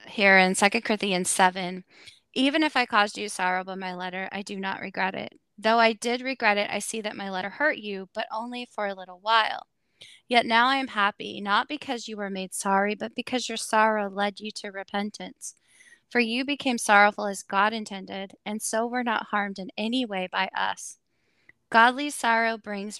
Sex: female